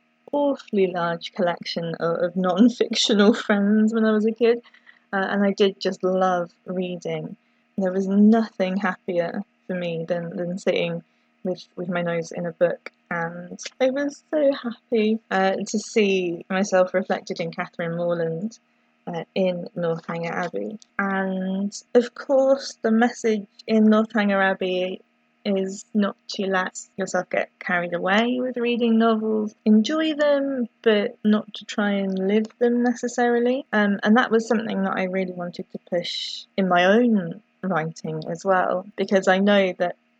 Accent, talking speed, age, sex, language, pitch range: British, 150 wpm, 20-39, female, English, 170-220 Hz